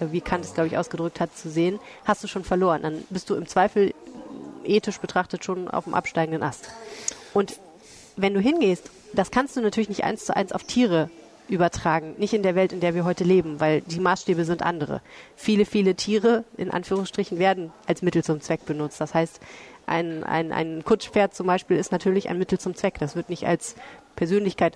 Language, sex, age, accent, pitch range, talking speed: German, female, 30-49, German, 170-205 Hz, 205 wpm